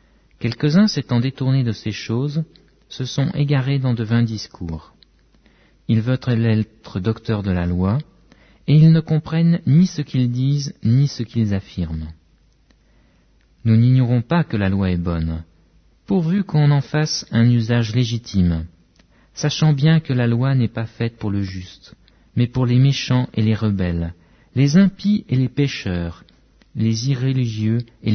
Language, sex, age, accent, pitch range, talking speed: English, male, 50-69, French, 105-145 Hz, 155 wpm